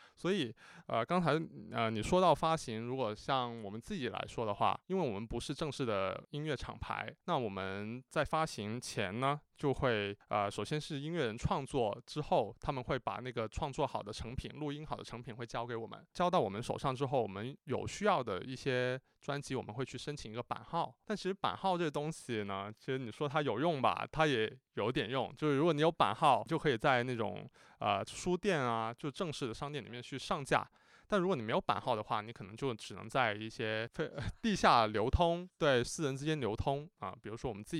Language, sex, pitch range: Chinese, male, 115-150 Hz